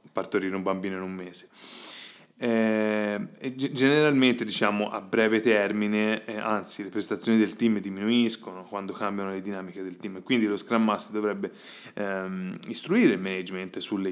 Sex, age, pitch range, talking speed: male, 20-39, 95-115 Hz, 155 wpm